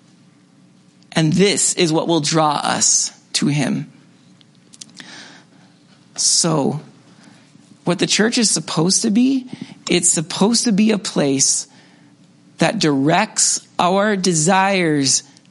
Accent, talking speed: American, 105 wpm